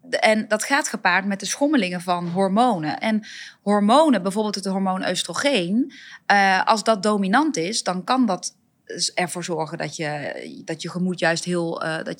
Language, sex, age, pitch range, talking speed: Dutch, female, 20-39, 185-240 Hz, 155 wpm